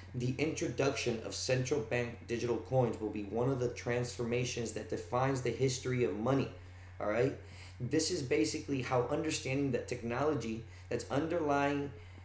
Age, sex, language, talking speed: 20-39, male, English, 145 wpm